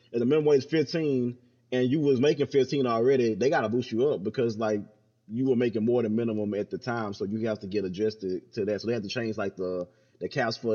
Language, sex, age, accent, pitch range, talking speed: English, male, 30-49, American, 110-135 Hz, 250 wpm